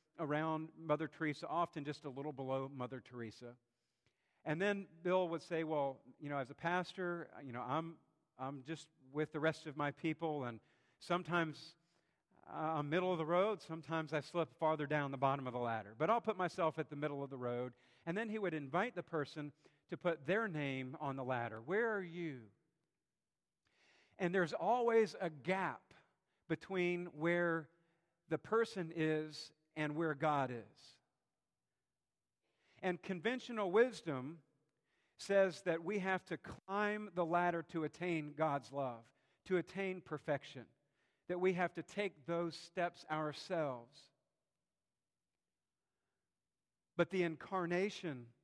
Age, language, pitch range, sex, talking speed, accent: 50-69, English, 140-175 Hz, male, 150 wpm, American